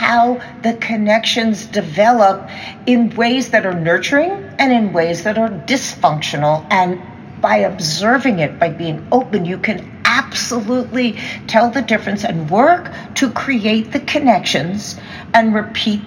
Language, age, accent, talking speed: English, 60-79, American, 135 wpm